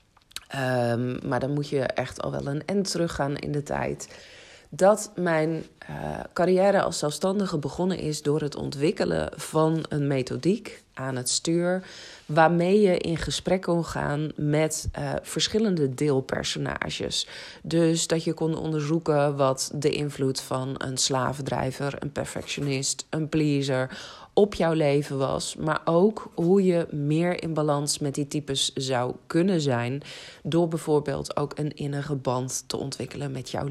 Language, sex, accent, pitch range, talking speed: Dutch, female, Dutch, 140-170 Hz, 150 wpm